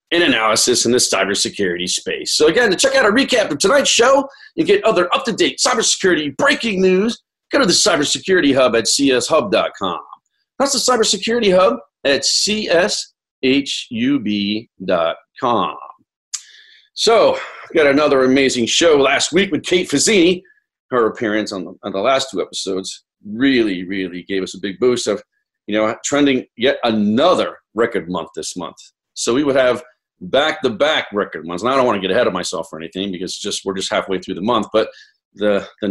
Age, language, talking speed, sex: 40-59, English, 175 wpm, male